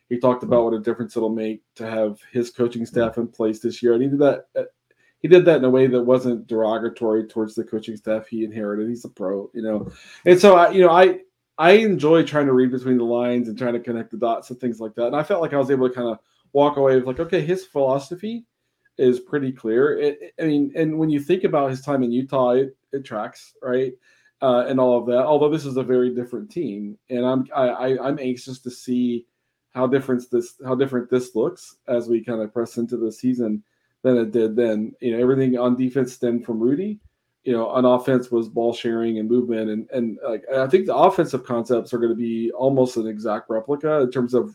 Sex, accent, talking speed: male, American, 240 wpm